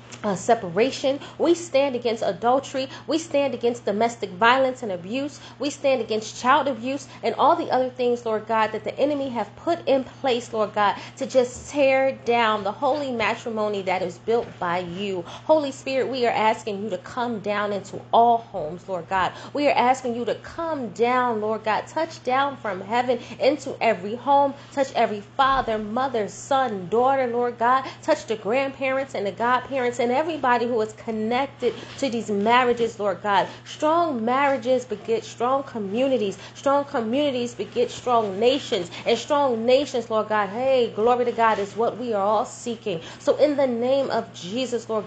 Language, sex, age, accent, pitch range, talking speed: English, female, 30-49, American, 215-265 Hz, 175 wpm